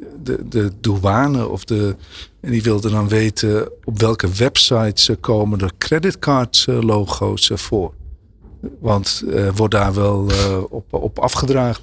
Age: 50-69